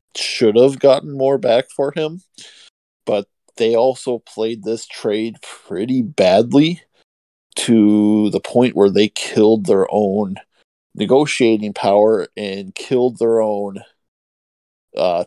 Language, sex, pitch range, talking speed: English, male, 105-130 Hz, 120 wpm